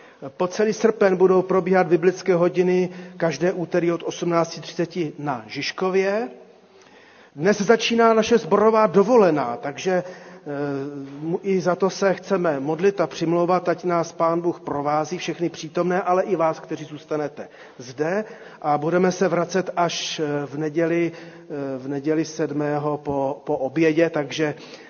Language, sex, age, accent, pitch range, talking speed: Czech, male, 40-59, native, 145-180 Hz, 130 wpm